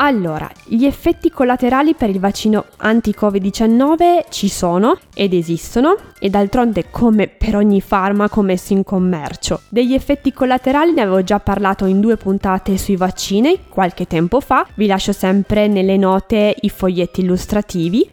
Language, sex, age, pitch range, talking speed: Italian, female, 20-39, 190-250 Hz, 145 wpm